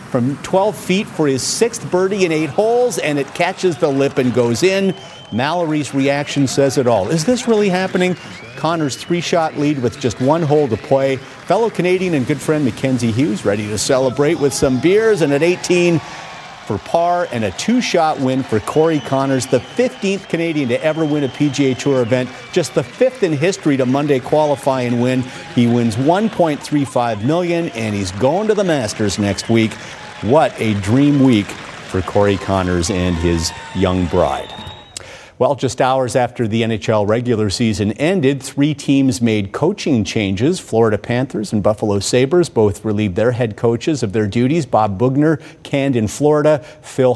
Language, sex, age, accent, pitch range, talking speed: English, male, 50-69, American, 110-150 Hz, 175 wpm